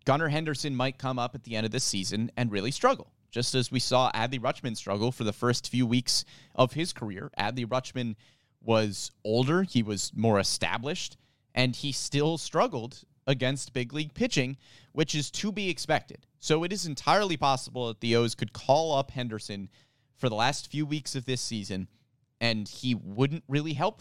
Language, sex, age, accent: English, male, 30-49, American